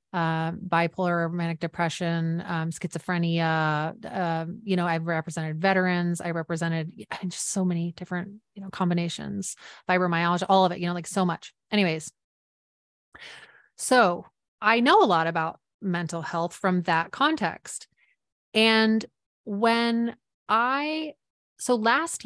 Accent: American